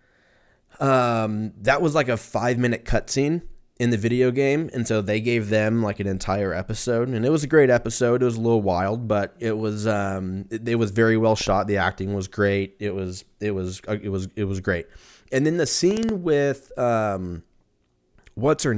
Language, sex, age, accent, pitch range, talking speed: English, male, 20-39, American, 95-120 Hz, 200 wpm